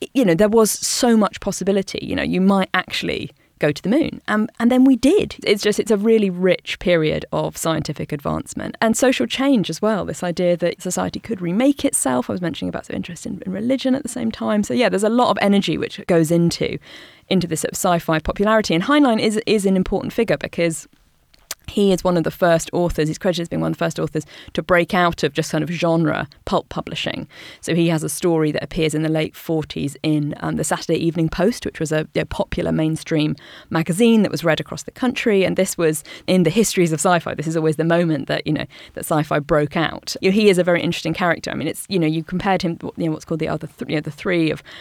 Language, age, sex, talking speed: English, 20-39, female, 245 wpm